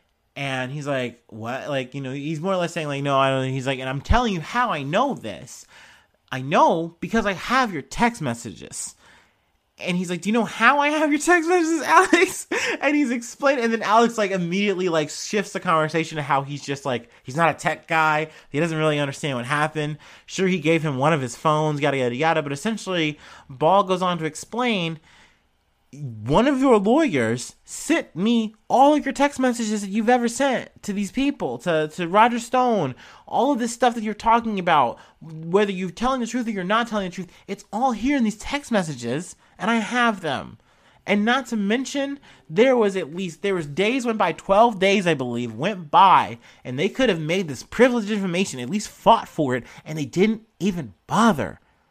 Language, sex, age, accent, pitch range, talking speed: English, male, 30-49, American, 155-235 Hz, 210 wpm